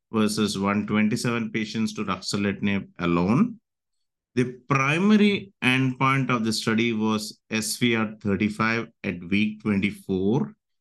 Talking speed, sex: 95 wpm, male